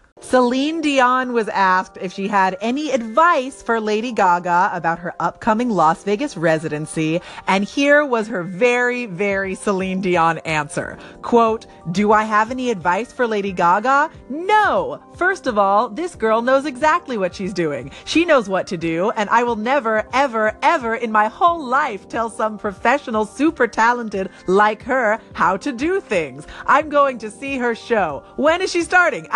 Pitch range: 195-275 Hz